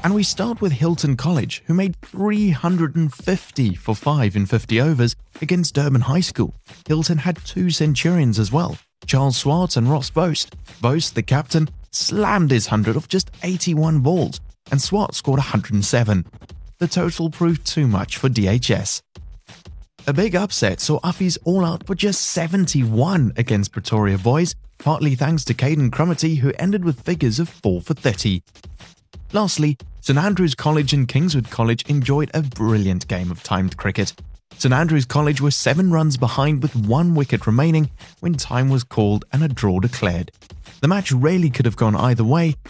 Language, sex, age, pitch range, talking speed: English, male, 30-49, 115-165 Hz, 165 wpm